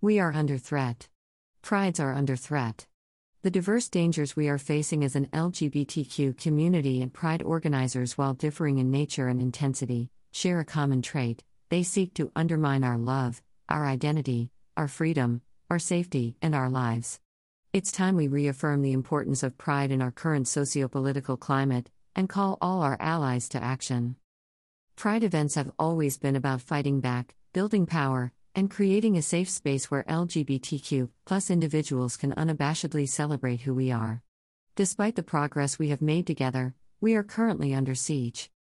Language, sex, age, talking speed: English, female, 50-69, 160 wpm